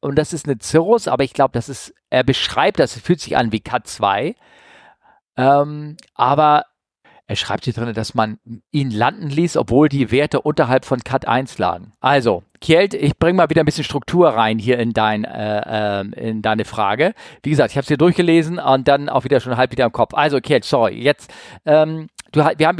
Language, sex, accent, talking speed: German, male, German, 210 wpm